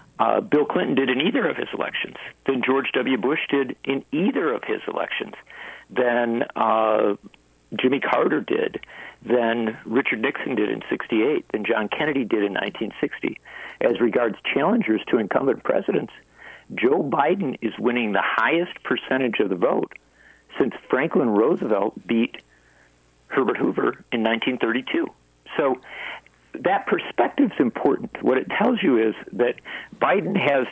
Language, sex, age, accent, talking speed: English, male, 50-69, American, 145 wpm